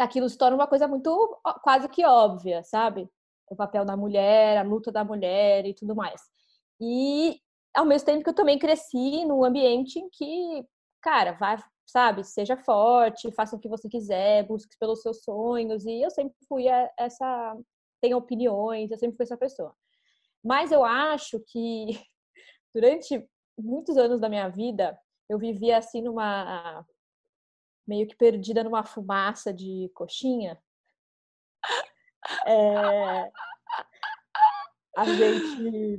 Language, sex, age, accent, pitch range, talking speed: English, female, 20-39, Brazilian, 210-265 Hz, 140 wpm